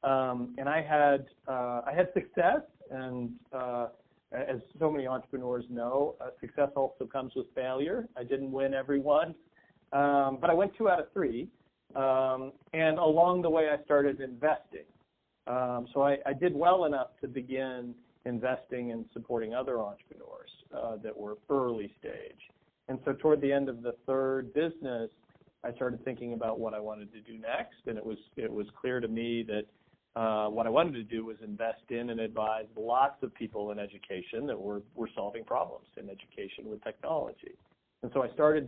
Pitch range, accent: 115-140 Hz, American